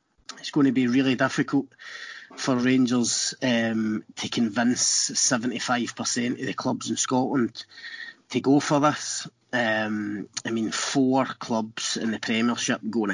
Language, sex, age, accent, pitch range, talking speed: English, male, 30-49, British, 120-145 Hz, 135 wpm